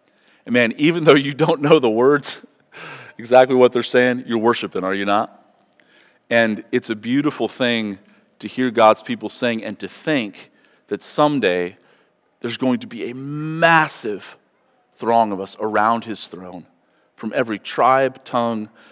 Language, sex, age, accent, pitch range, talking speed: English, male, 40-59, American, 95-115 Hz, 155 wpm